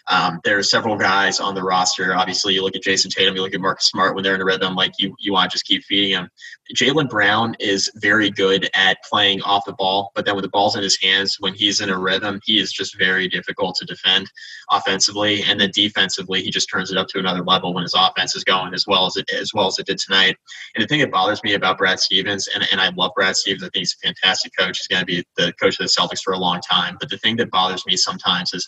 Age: 20-39